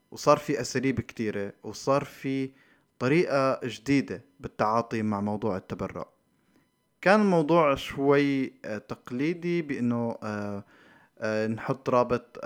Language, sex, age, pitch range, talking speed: Arabic, male, 20-39, 115-160 Hz, 90 wpm